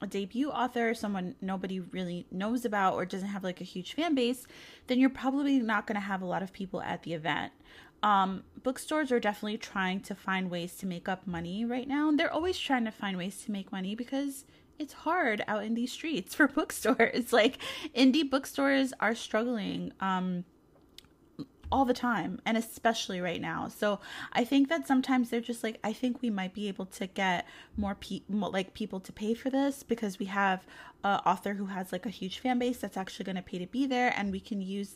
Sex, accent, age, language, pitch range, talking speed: female, American, 20-39, English, 190-255 Hz, 210 wpm